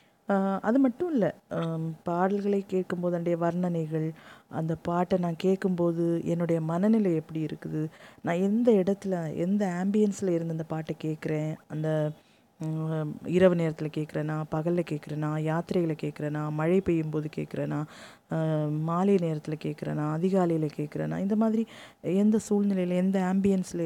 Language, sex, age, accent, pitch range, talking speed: Tamil, female, 20-39, native, 160-210 Hz, 120 wpm